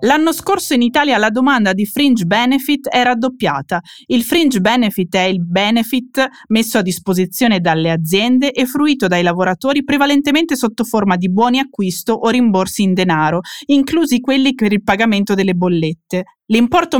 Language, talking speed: Italian, 155 wpm